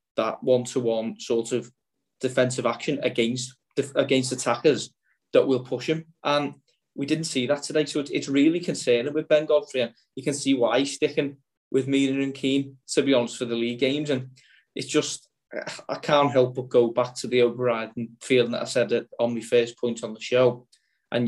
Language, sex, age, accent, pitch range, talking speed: English, male, 20-39, British, 120-140 Hz, 195 wpm